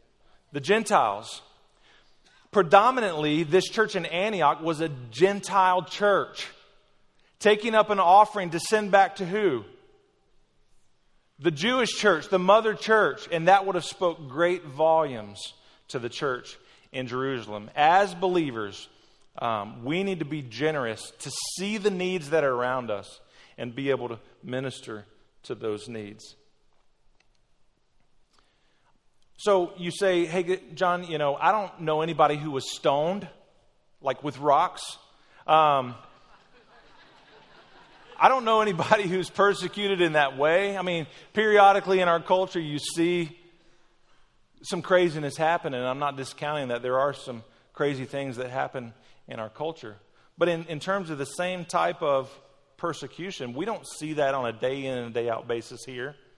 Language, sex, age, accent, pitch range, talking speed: English, male, 40-59, American, 135-190 Hz, 145 wpm